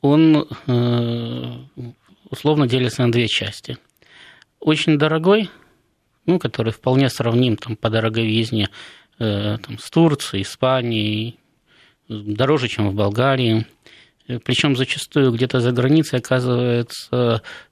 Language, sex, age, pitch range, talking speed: Russian, male, 20-39, 115-150 Hz, 100 wpm